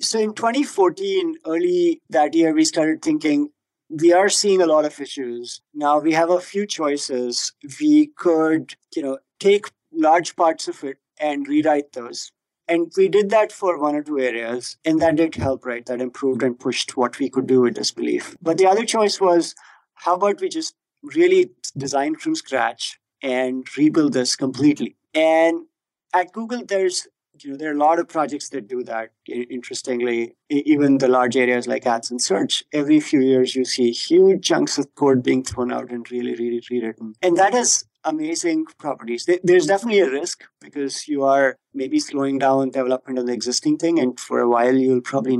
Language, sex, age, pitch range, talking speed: English, male, 50-69, 130-185 Hz, 190 wpm